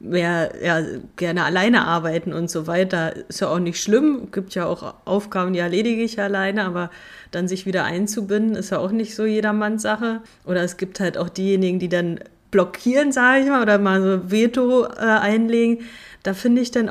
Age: 30-49